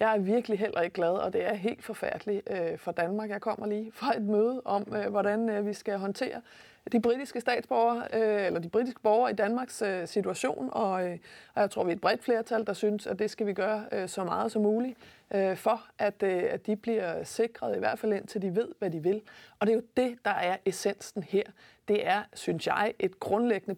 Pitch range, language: 200-235 Hz, Danish